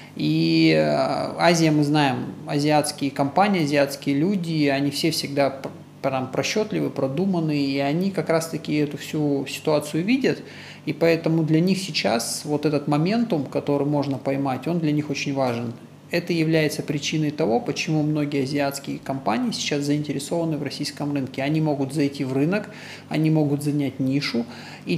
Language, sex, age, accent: Russian, male, 20-39, native